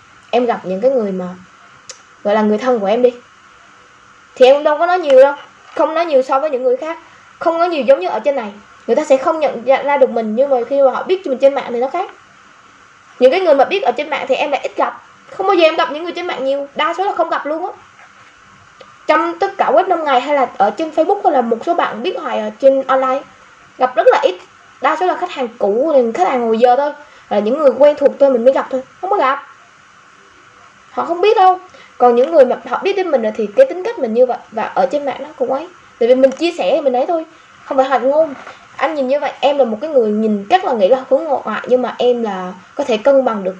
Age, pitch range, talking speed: 10-29, 240-305 Hz, 275 wpm